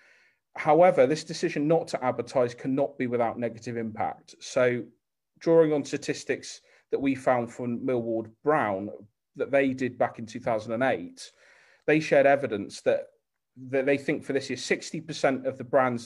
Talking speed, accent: 155 wpm, British